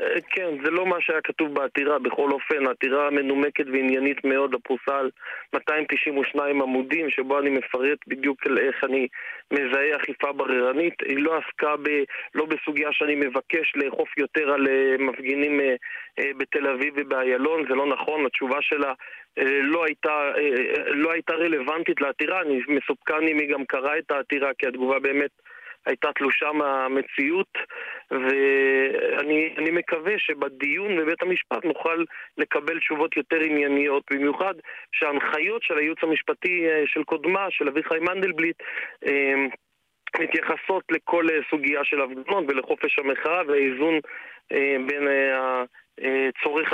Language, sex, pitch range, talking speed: Hebrew, male, 135-165 Hz, 125 wpm